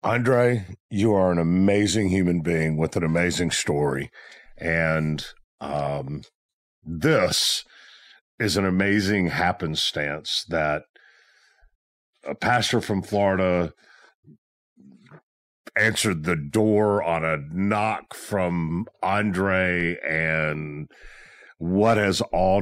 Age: 50-69